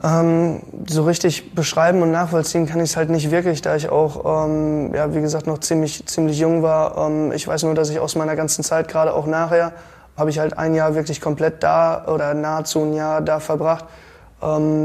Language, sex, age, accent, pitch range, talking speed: German, male, 20-39, German, 155-165 Hz, 205 wpm